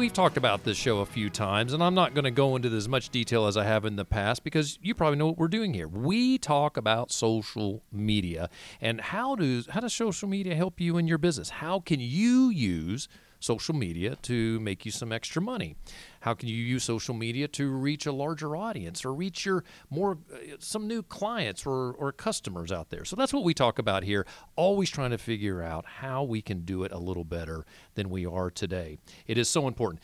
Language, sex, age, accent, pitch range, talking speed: English, male, 40-59, American, 100-150 Hz, 225 wpm